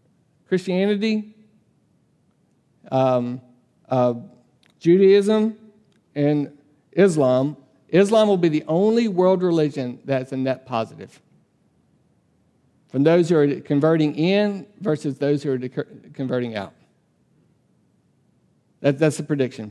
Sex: male